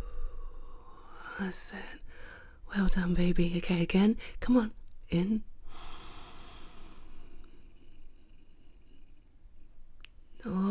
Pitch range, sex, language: 170-235 Hz, female, English